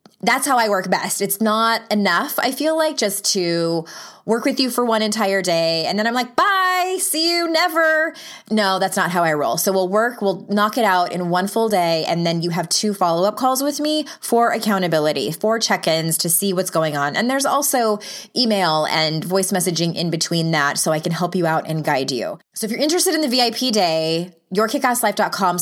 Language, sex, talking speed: English, female, 215 wpm